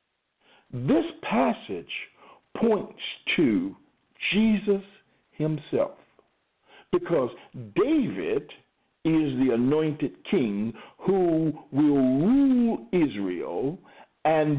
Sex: male